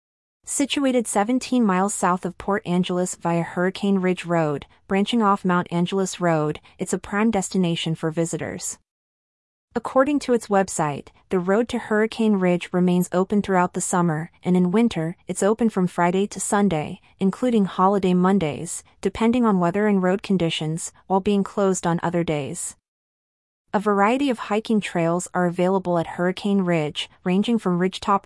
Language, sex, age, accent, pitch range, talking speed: English, female, 30-49, American, 170-205 Hz, 155 wpm